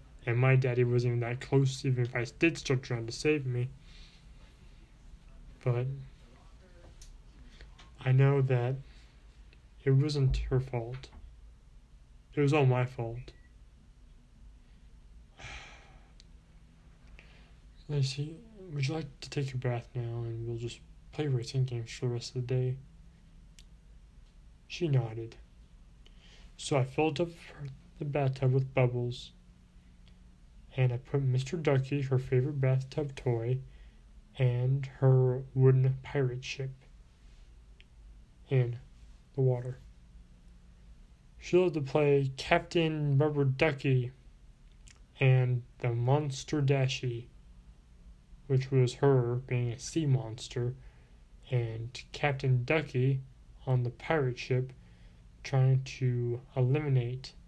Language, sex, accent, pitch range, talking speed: English, male, American, 115-135 Hz, 110 wpm